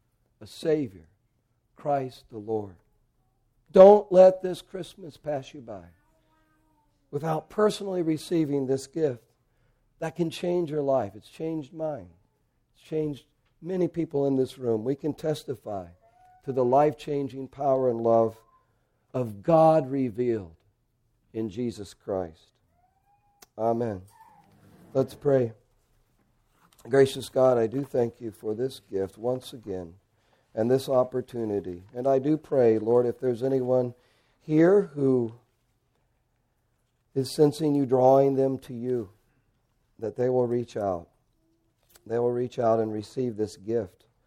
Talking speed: 125 wpm